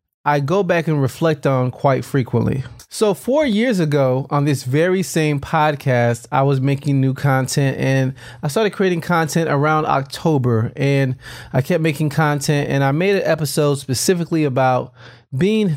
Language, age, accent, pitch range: English, 30-49, American, 125-160 Hz